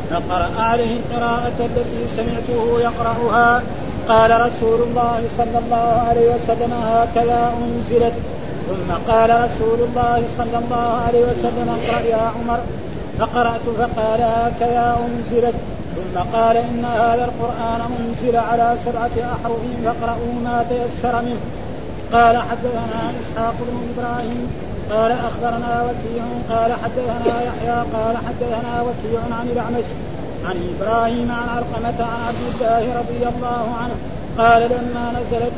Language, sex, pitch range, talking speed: Arabic, male, 230-240 Hz, 125 wpm